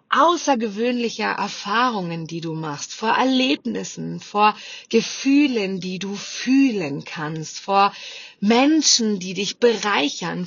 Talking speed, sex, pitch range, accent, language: 105 wpm, female, 180-230 Hz, German, German